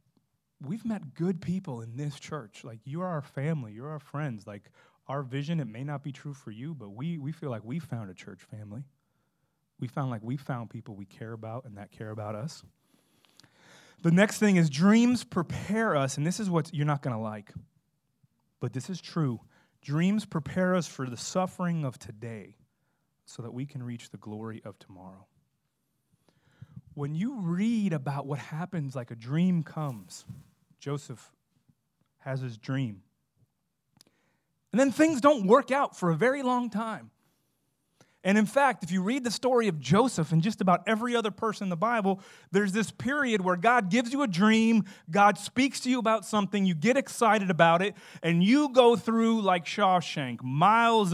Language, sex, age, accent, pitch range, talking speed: English, male, 30-49, American, 135-205 Hz, 185 wpm